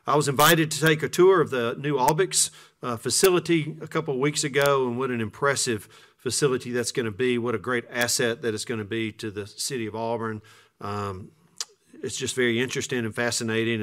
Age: 40-59